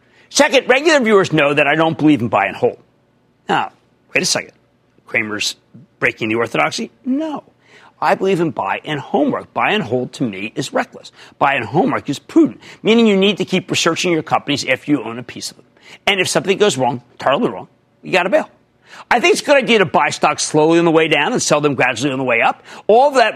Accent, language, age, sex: American, English, 40-59, male